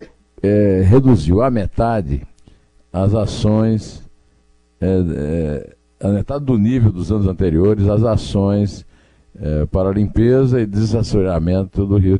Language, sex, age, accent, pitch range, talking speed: Portuguese, male, 60-79, Brazilian, 85-125 Hz, 120 wpm